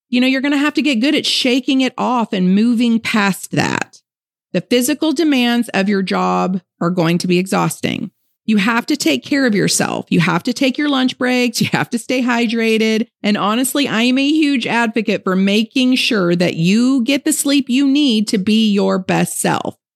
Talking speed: 205 wpm